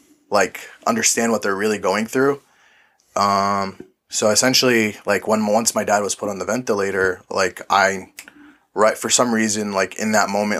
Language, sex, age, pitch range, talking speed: English, male, 20-39, 100-115 Hz, 165 wpm